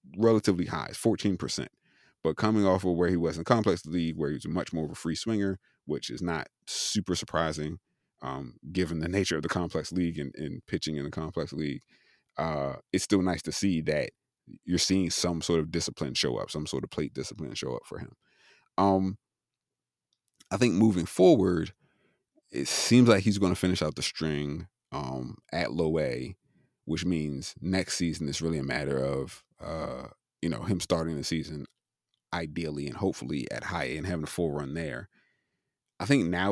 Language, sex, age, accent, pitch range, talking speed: English, male, 30-49, American, 75-95 Hz, 190 wpm